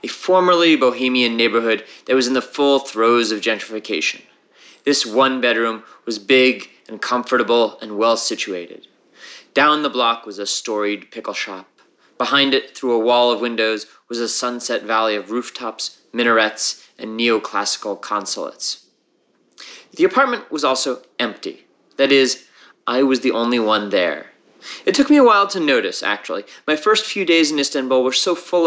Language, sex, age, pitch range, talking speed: English, male, 30-49, 115-145 Hz, 155 wpm